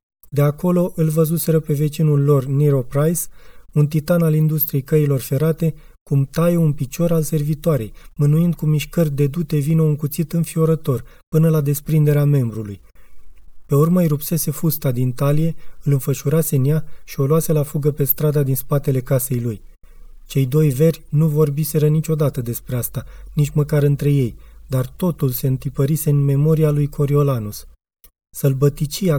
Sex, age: male, 30-49